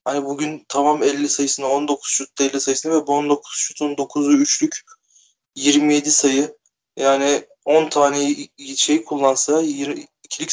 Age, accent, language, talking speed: 20-39, native, Turkish, 125 wpm